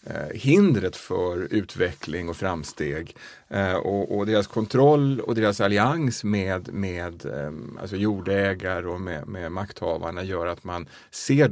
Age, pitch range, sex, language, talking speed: 30-49, 95-120 Hz, male, Swedish, 125 wpm